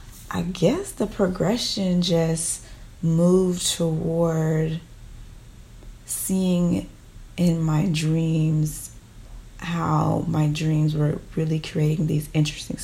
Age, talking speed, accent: 30-49, 90 wpm, American